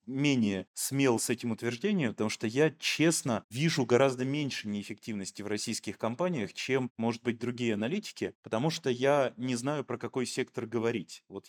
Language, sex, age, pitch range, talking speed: Russian, male, 30-49, 110-140 Hz, 160 wpm